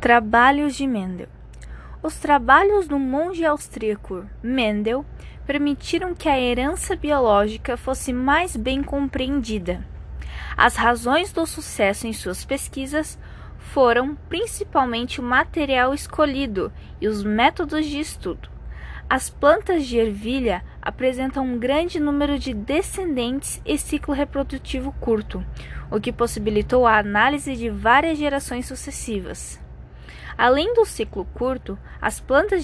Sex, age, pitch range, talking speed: female, 20-39, 230-290 Hz, 120 wpm